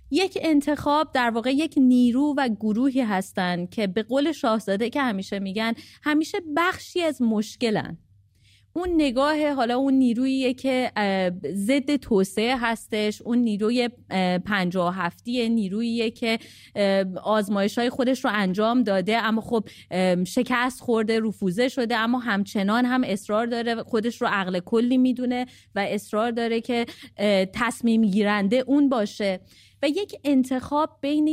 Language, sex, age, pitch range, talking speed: English, female, 30-49, 205-260 Hz, 130 wpm